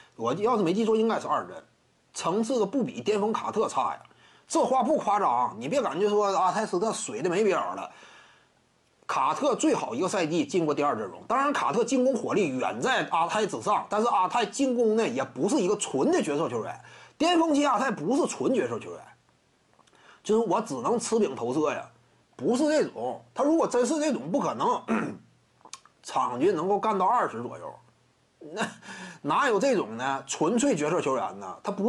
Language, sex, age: Chinese, male, 30-49